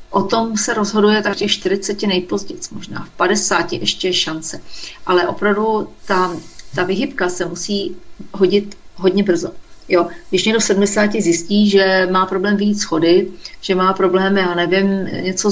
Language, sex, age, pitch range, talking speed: Slovak, female, 40-59, 175-200 Hz, 160 wpm